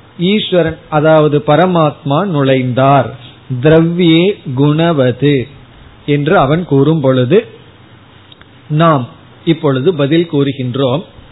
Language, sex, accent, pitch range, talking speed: Tamil, male, native, 130-175 Hz, 70 wpm